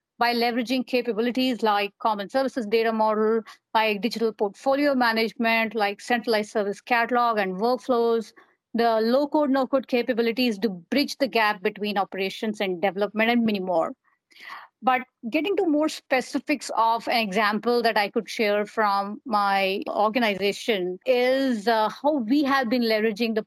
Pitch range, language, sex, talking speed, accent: 215-265 Hz, English, female, 145 wpm, Indian